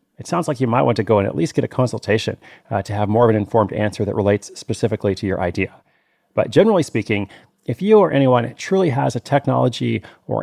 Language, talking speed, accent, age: English, 230 wpm, American, 30-49